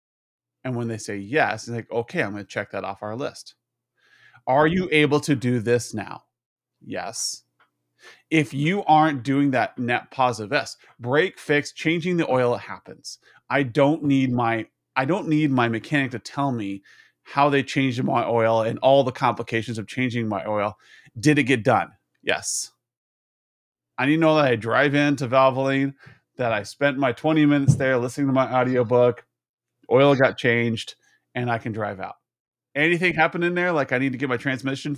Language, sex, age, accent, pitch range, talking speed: English, male, 30-49, American, 115-145 Hz, 185 wpm